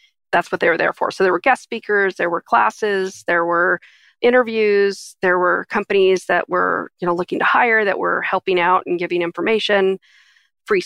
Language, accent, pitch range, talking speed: English, American, 185-215 Hz, 195 wpm